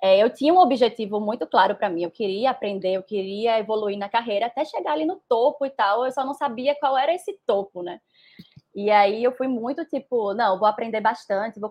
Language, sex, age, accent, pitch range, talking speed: Portuguese, female, 20-39, Brazilian, 205-255 Hz, 225 wpm